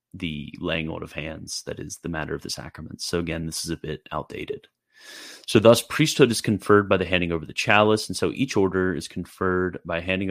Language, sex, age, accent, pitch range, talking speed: English, male, 30-49, American, 80-95 Hz, 215 wpm